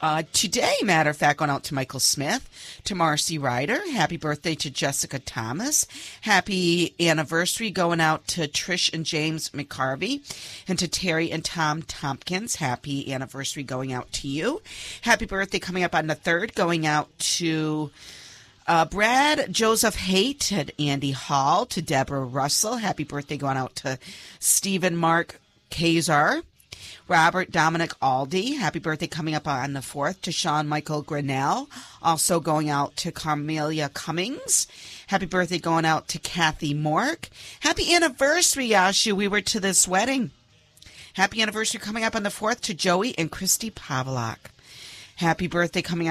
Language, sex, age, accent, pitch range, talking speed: English, female, 40-59, American, 145-185 Hz, 150 wpm